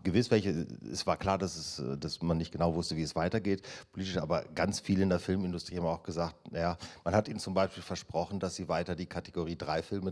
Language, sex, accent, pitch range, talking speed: German, male, German, 85-100 Hz, 230 wpm